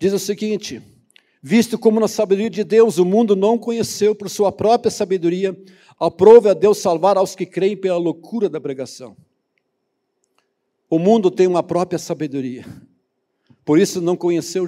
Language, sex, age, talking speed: Portuguese, male, 60-79, 165 wpm